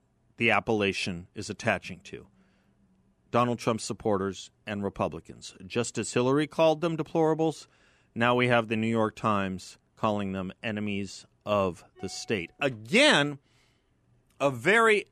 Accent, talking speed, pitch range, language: American, 125 wpm, 105-140 Hz, English